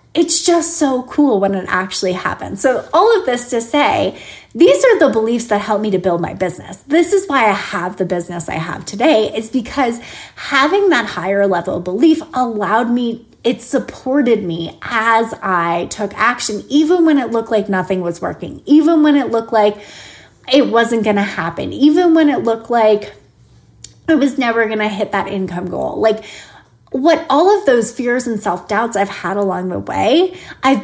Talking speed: 190 wpm